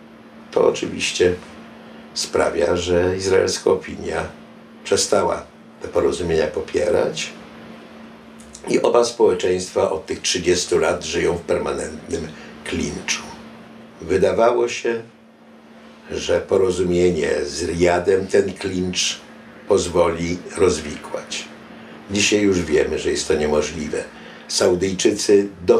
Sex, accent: male, native